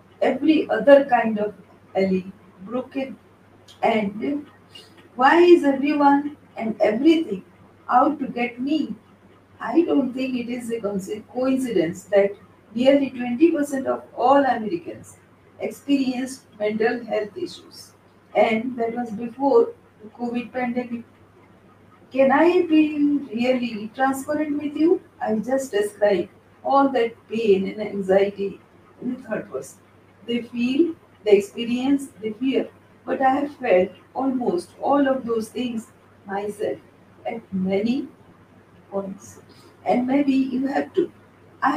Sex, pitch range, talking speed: female, 215-280 Hz, 120 wpm